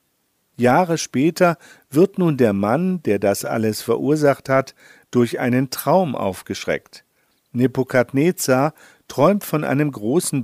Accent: German